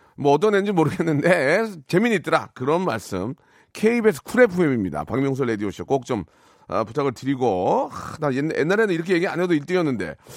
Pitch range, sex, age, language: 140-205 Hz, male, 40-59, Korean